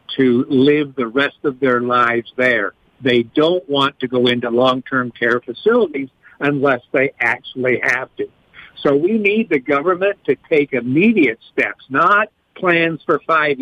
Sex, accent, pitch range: male, American, 125-160 Hz